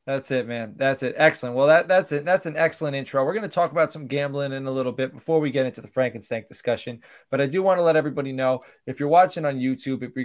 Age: 20-39